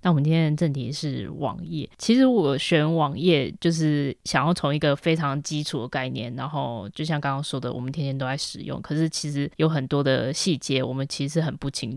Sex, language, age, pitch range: female, Chinese, 20-39, 145-175 Hz